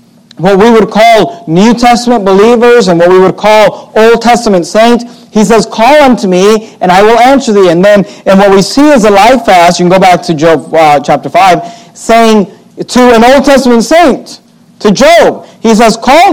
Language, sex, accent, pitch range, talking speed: English, male, American, 185-230 Hz, 195 wpm